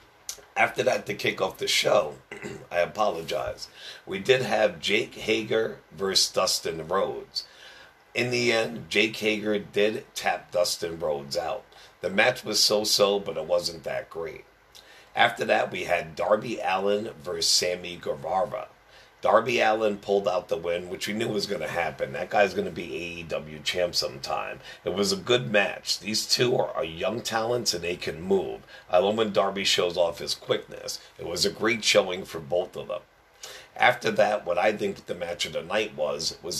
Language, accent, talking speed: English, American, 180 wpm